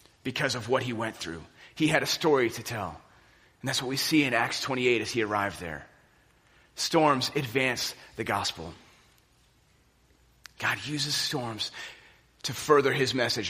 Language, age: English, 30-49